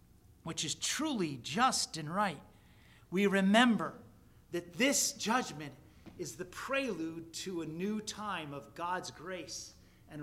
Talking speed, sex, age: 130 wpm, male, 50-69